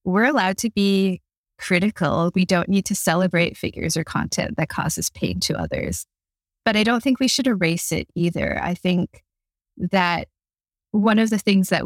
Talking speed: 175 wpm